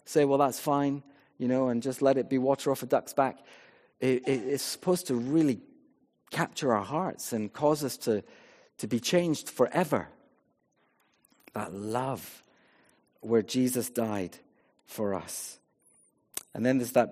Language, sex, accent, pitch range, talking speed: English, male, British, 110-140 Hz, 155 wpm